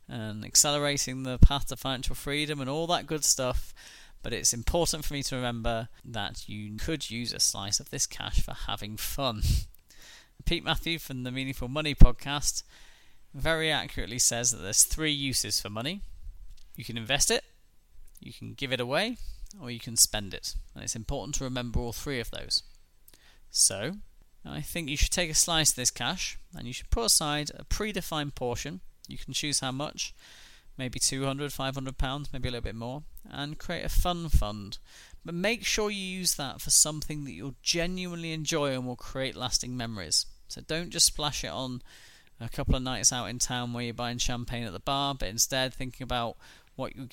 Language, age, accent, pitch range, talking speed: English, 30-49, British, 110-150 Hz, 190 wpm